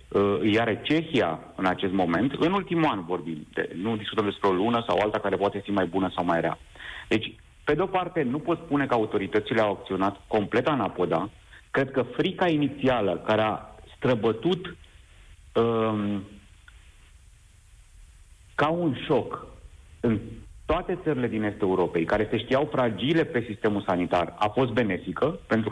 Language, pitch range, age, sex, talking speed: Romanian, 100-140 Hz, 50-69, male, 155 wpm